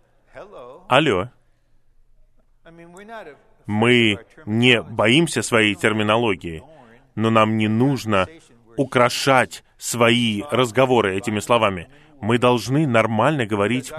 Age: 30-49